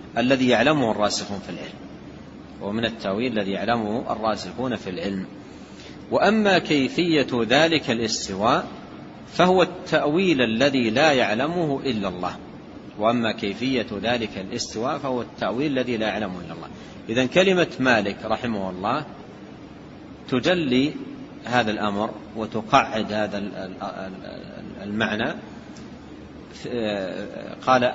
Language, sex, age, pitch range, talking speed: Arabic, male, 40-59, 105-135 Hz, 100 wpm